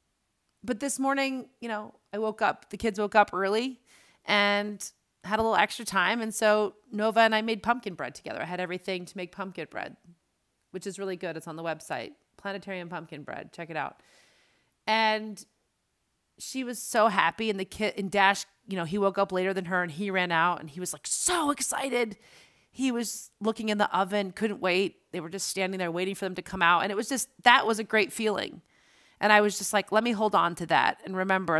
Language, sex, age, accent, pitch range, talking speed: English, female, 30-49, American, 175-215 Hz, 220 wpm